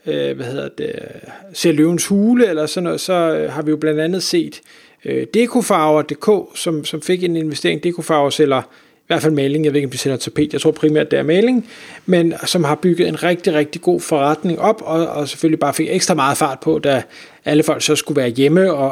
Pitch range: 155-185 Hz